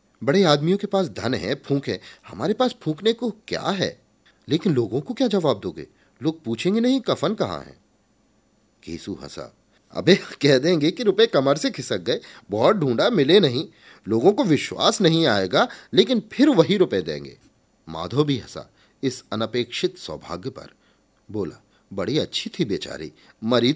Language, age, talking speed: Hindi, 40-59, 160 wpm